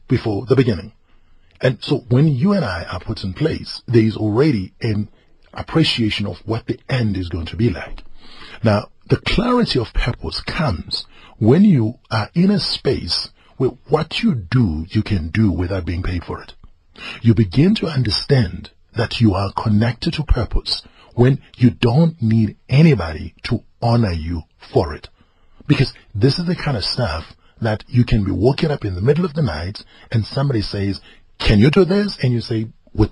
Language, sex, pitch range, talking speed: English, male, 100-140 Hz, 185 wpm